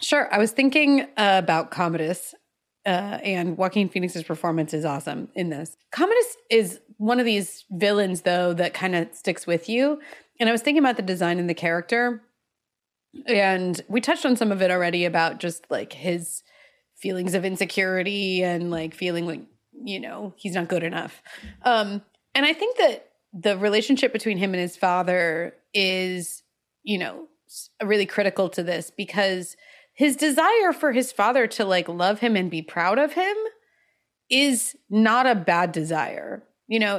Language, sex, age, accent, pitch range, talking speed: English, female, 30-49, American, 180-245 Hz, 170 wpm